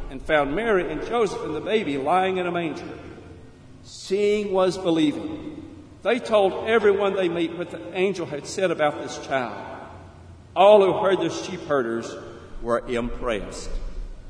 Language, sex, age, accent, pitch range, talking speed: English, male, 60-79, American, 120-185 Hz, 150 wpm